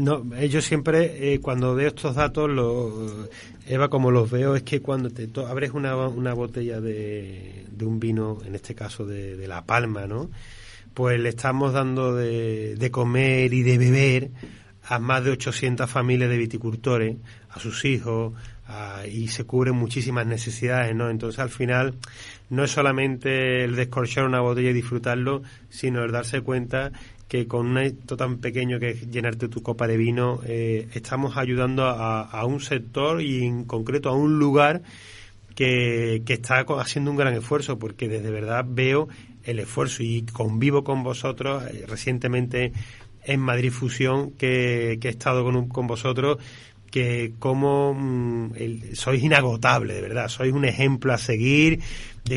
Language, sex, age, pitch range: Spanish, male, 30-49, 115-135 Hz